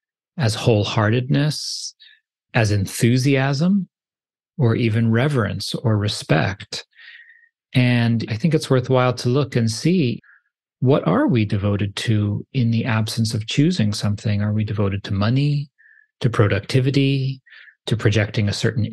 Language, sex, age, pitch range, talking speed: English, male, 40-59, 105-130 Hz, 125 wpm